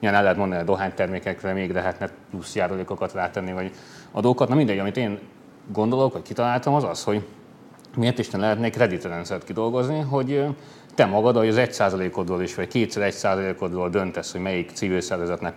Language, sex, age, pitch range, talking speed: Hungarian, male, 30-49, 95-120 Hz, 180 wpm